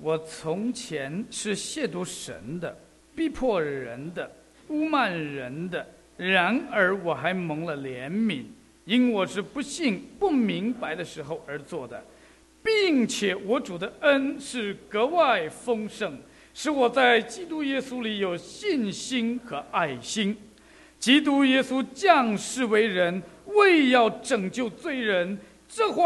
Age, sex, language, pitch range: 50-69, male, English, 205-295 Hz